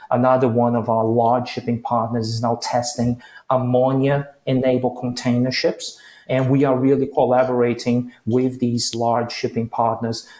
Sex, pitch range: male, 120-140 Hz